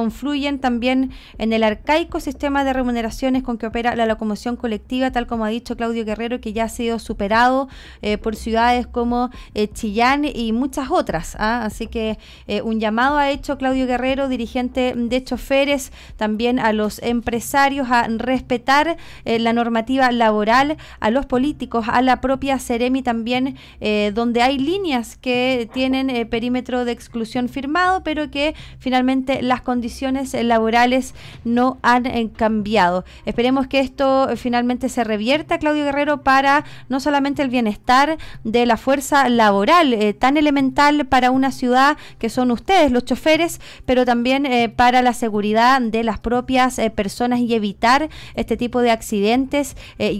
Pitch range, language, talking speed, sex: 230-270 Hz, Spanish, 160 wpm, female